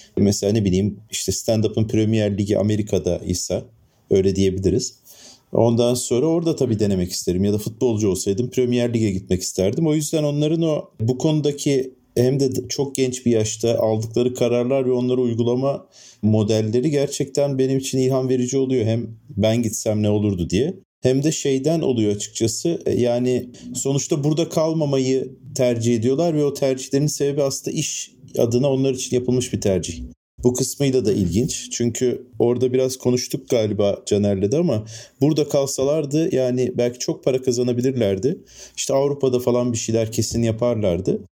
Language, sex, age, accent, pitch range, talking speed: Turkish, male, 40-59, native, 110-135 Hz, 150 wpm